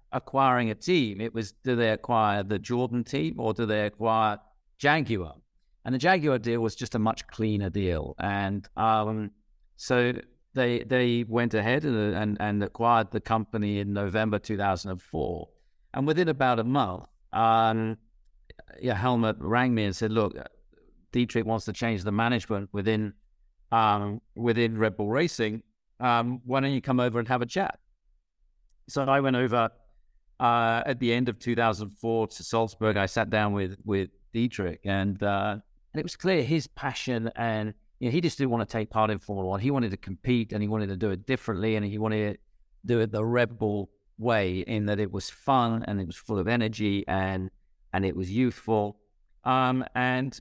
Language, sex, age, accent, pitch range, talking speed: English, male, 50-69, British, 105-120 Hz, 185 wpm